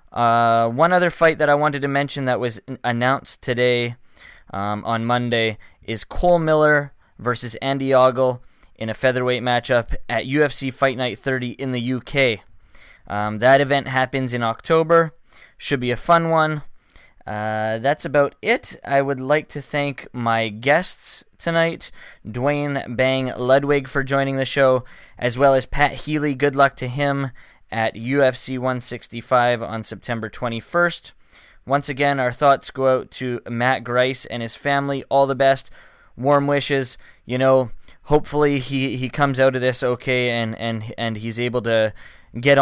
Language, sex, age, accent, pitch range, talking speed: English, male, 10-29, American, 120-140 Hz, 160 wpm